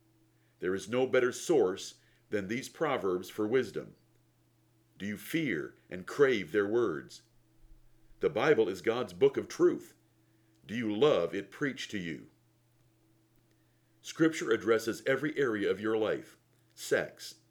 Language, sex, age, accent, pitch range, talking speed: English, male, 50-69, American, 110-155 Hz, 135 wpm